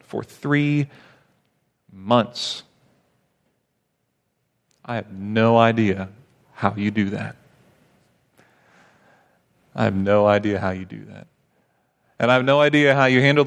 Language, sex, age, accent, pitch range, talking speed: English, male, 40-59, American, 110-140 Hz, 120 wpm